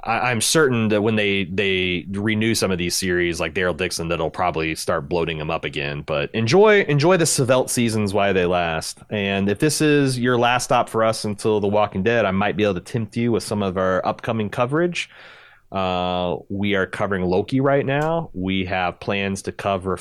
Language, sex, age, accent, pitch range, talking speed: English, male, 30-49, American, 95-135 Hz, 205 wpm